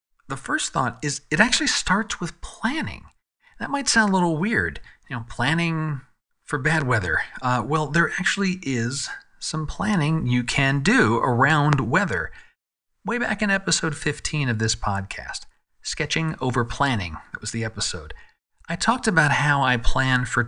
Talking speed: 160 wpm